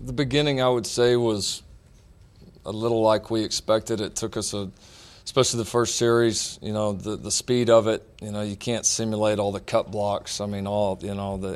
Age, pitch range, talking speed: 40-59, 100-110 Hz, 215 wpm